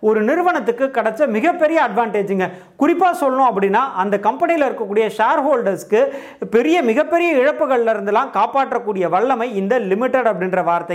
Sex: male